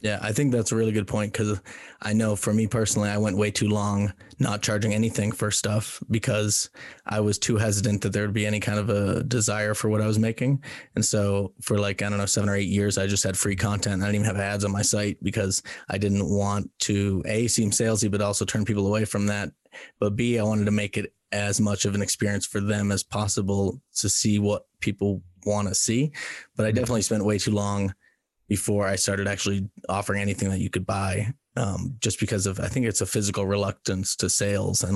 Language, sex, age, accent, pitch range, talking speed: English, male, 20-39, American, 100-110 Hz, 230 wpm